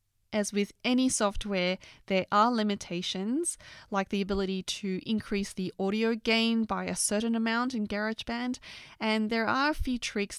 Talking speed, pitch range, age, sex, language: 155 wpm, 185-235 Hz, 20-39, female, English